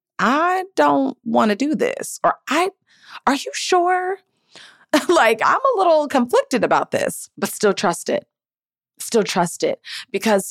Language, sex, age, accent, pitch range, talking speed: English, female, 30-49, American, 155-210 Hz, 150 wpm